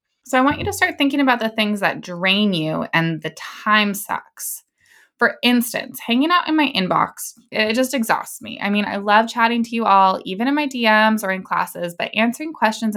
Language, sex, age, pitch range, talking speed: English, female, 20-39, 175-235 Hz, 215 wpm